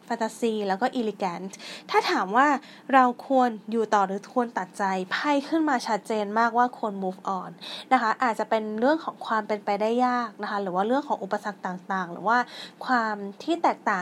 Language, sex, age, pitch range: Thai, female, 20-39, 200-255 Hz